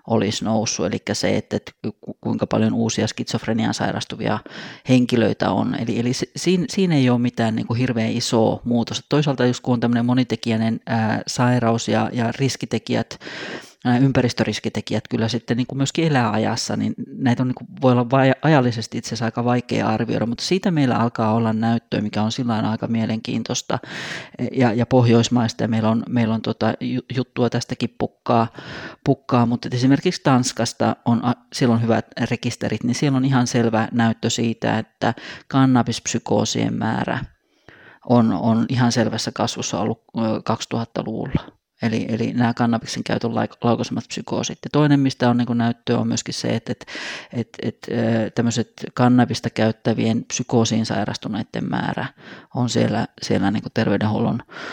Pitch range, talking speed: 115-125 Hz, 150 wpm